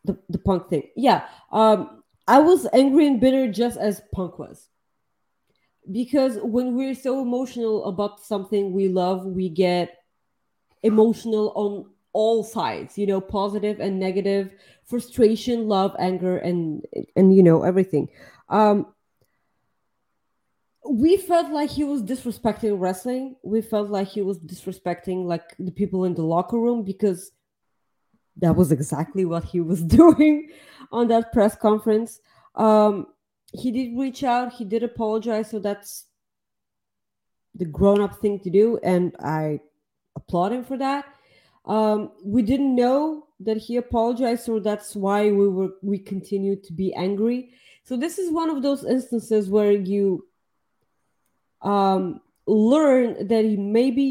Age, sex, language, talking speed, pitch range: 20-39, female, English, 140 wpm, 190-245 Hz